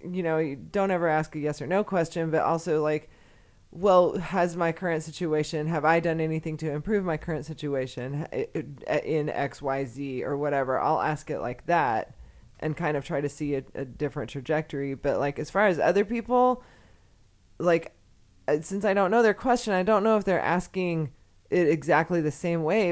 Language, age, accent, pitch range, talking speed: English, 20-39, American, 135-170 Hz, 190 wpm